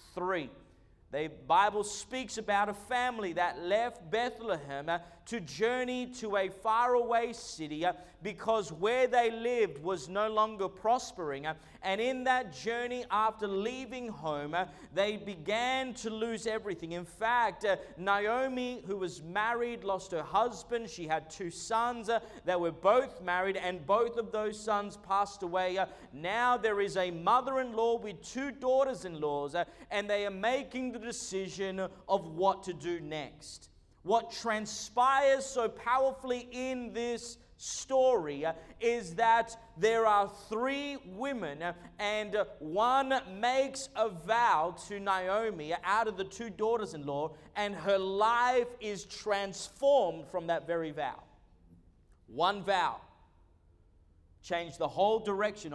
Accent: Australian